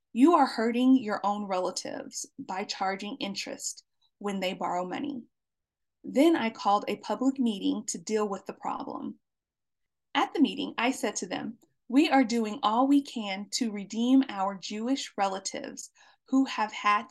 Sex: female